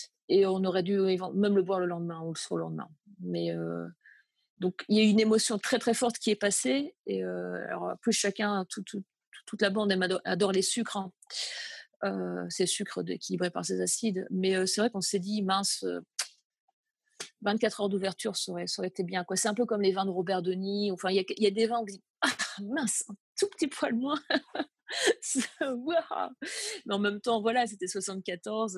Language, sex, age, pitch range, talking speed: French, female, 30-49, 185-230 Hz, 205 wpm